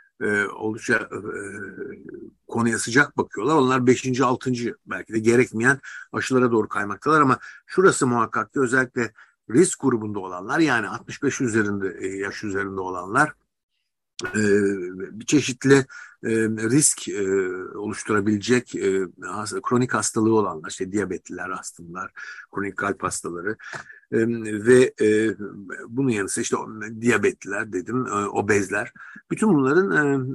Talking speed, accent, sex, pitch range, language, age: 120 wpm, native, male, 110-140 Hz, Turkish, 60-79